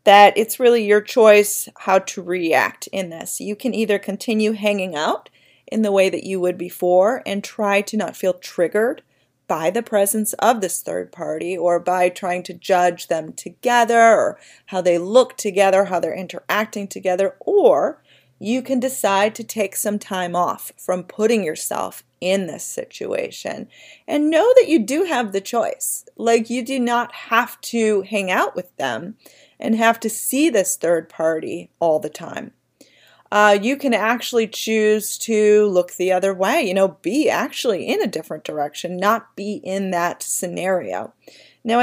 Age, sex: 40-59, female